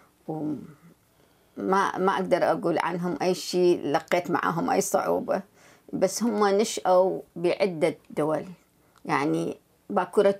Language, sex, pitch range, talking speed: Arabic, female, 160-200 Hz, 105 wpm